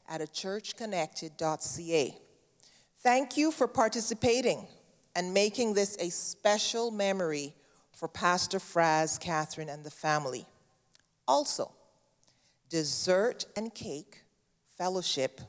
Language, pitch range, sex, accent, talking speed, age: English, 155-210 Hz, female, American, 95 wpm, 40-59